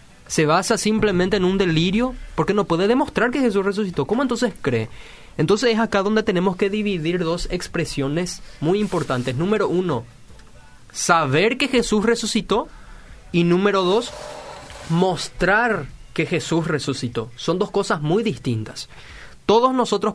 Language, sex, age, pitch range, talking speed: Spanish, male, 20-39, 155-210 Hz, 140 wpm